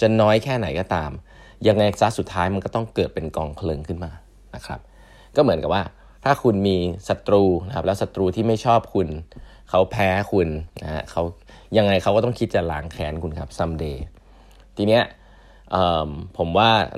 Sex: male